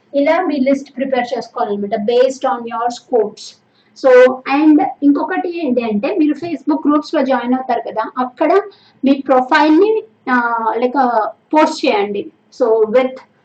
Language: Telugu